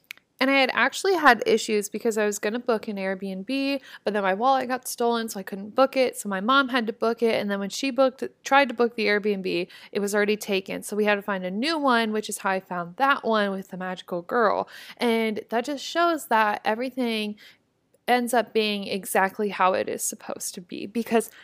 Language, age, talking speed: English, 20-39, 225 wpm